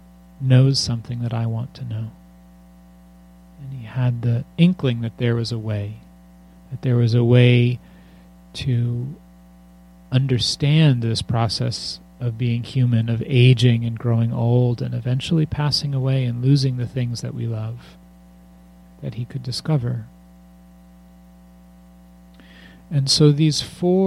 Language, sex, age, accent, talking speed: English, male, 40-59, American, 130 wpm